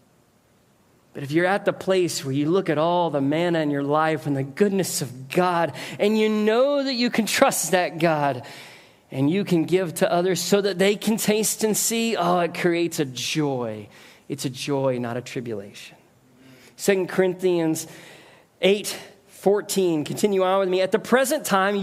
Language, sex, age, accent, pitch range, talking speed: English, male, 40-59, American, 155-210 Hz, 180 wpm